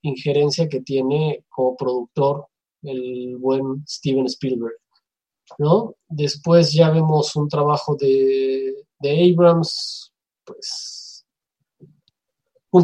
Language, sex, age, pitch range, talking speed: Spanish, male, 20-39, 140-180 Hz, 95 wpm